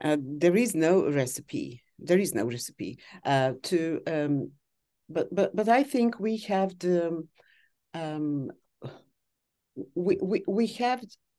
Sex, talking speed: female, 130 wpm